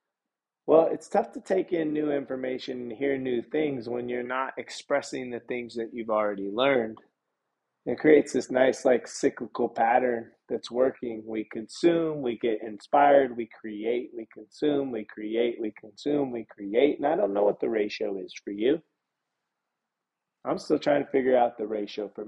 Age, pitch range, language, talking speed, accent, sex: 30-49, 110-135 Hz, English, 175 wpm, American, male